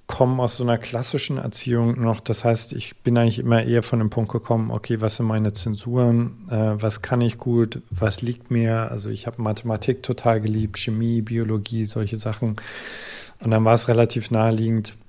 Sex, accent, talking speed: male, German, 185 wpm